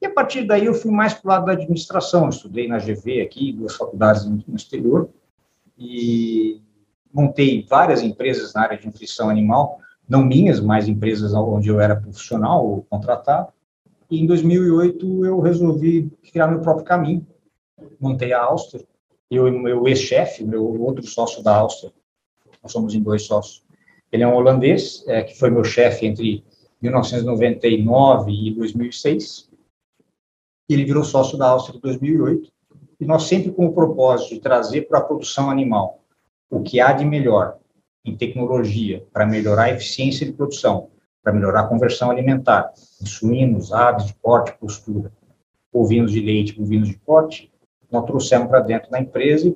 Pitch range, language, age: 110-155 Hz, Portuguese, 50-69